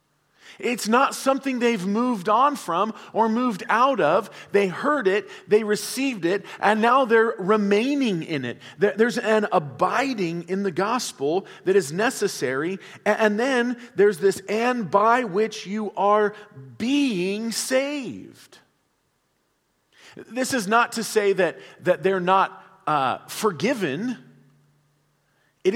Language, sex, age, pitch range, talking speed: English, male, 40-59, 145-225 Hz, 130 wpm